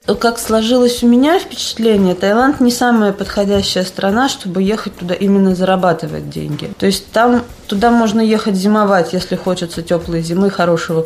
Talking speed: 150 wpm